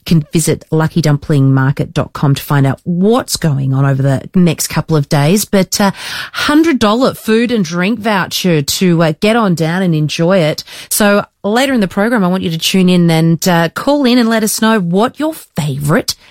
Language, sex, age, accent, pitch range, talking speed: English, female, 30-49, Australian, 160-225 Hz, 200 wpm